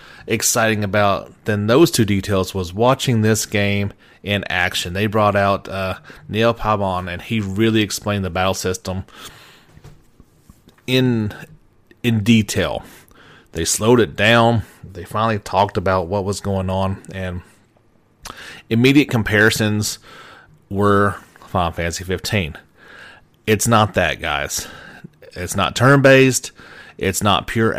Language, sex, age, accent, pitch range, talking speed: English, male, 30-49, American, 95-115 Hz, 125 wpm